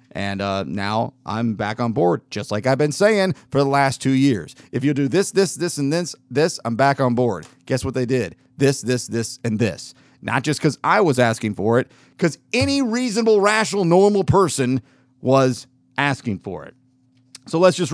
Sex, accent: male, American